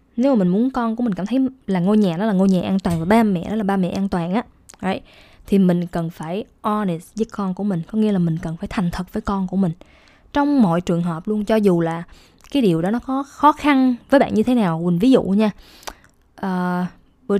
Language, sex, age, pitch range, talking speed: Vietnamese, female, 20-39, 185-245 Hz, 260 wpm